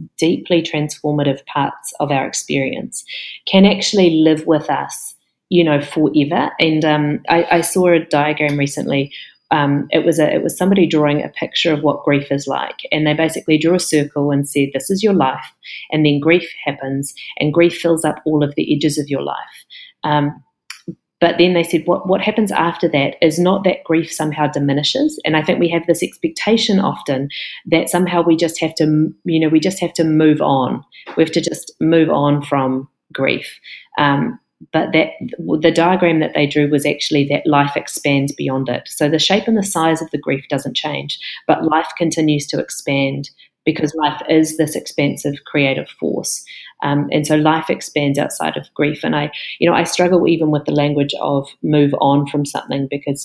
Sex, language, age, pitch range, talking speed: female, English, 40-59, 145-170 Hz, 195 wpm